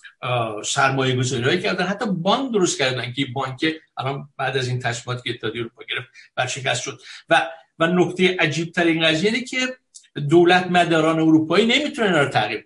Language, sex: Persian, male